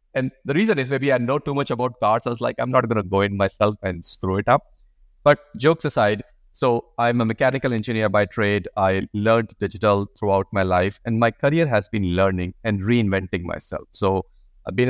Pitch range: 95-120 Hz